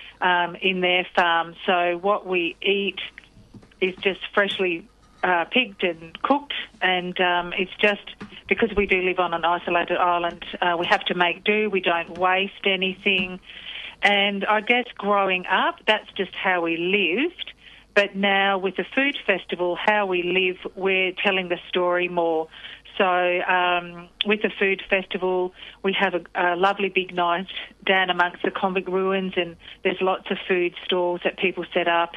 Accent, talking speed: Australian, 165 wpm